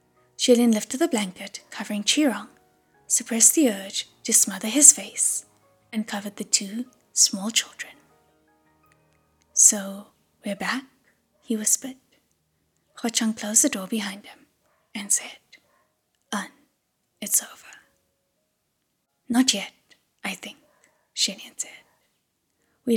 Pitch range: 205-250 Hz